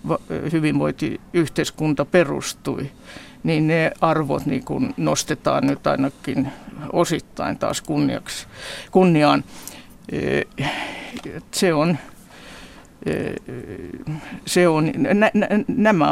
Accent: native